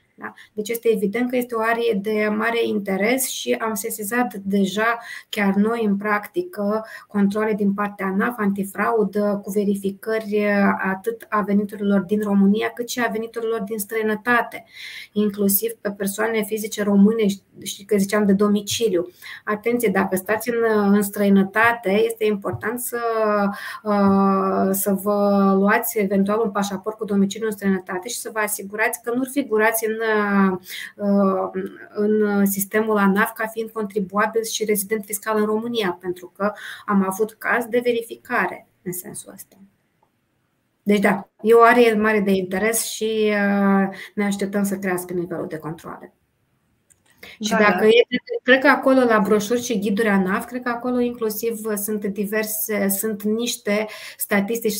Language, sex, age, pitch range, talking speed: Romanian, female, 20-39, 200-225 Hz, 140 wpm